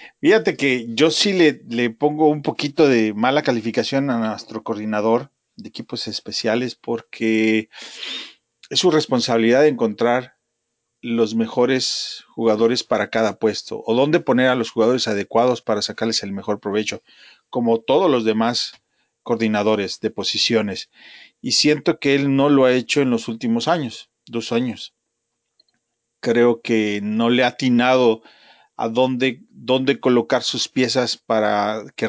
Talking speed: 145 wpm